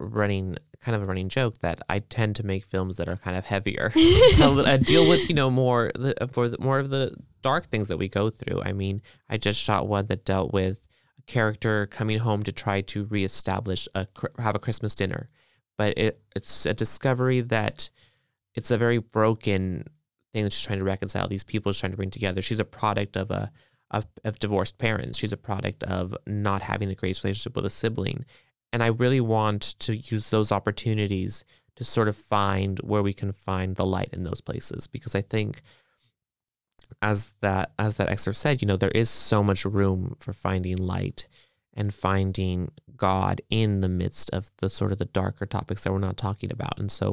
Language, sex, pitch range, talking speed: English, male, 95-115 Hz, 205 wpm